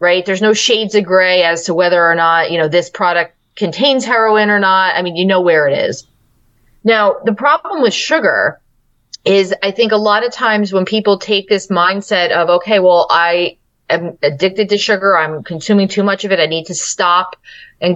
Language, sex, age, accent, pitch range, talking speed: English, female, 30-49, American, 180-245 Hz, 205 wpm